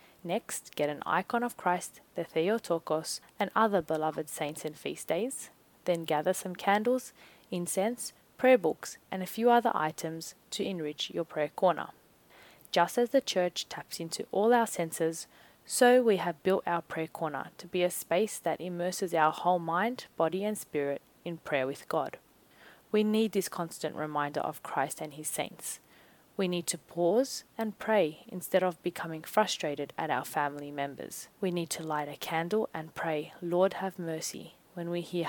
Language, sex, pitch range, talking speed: English, female, 160-195 Hz, 175 wpm